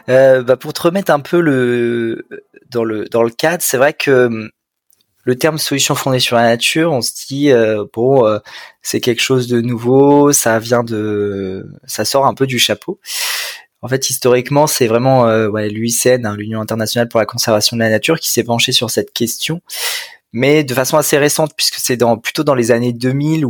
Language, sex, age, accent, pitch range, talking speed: French, male, 20-39, French, 110-140 Hz, 200 wpm